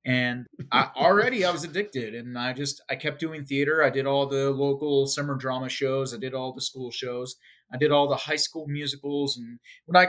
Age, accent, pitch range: 30-49, American, 135-165 Hz